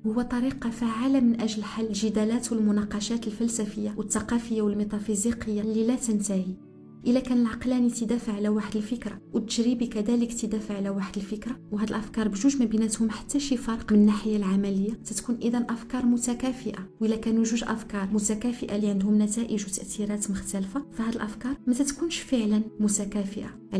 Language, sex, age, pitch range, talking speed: Arabic, female, 40-59, 205-235 Hz, 145 wpm